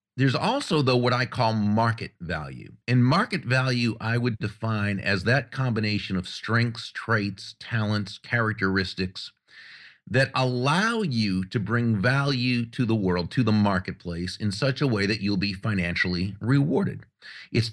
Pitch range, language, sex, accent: 95-125 Hz, English, male, American